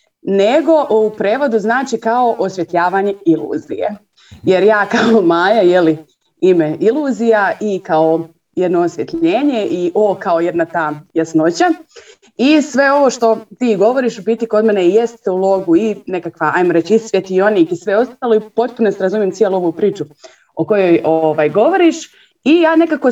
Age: 30-49